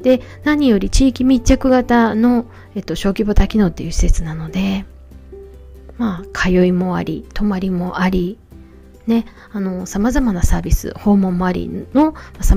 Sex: female